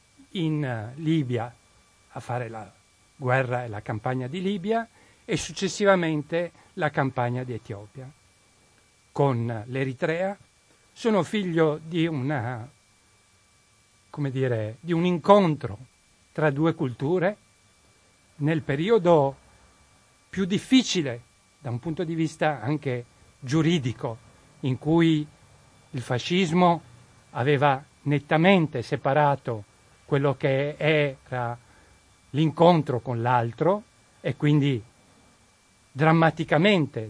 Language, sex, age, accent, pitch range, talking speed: Italian, male, 60-79, native, 115-160 Hz, 95 wpm